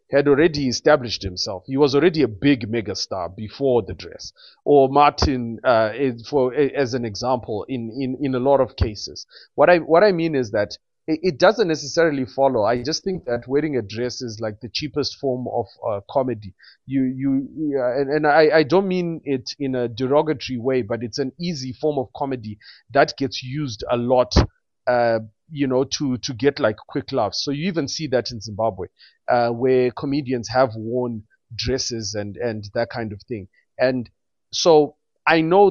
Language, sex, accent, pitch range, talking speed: English, male, South African, 120-150 Hz, 190 wpm